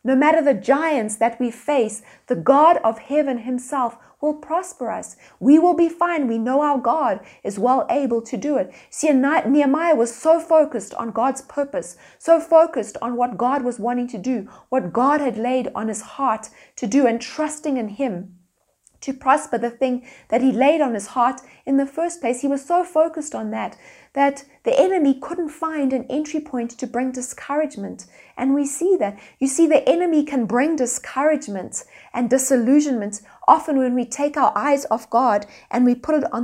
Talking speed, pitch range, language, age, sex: 190 wpm, 240-295 Hz, English, 30-49, female